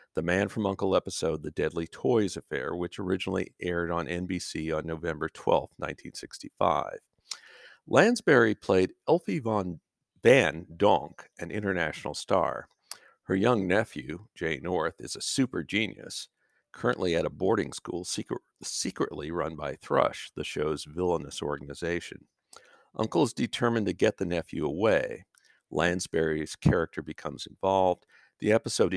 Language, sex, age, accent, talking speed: English, male, 50-69, American, 135 wpm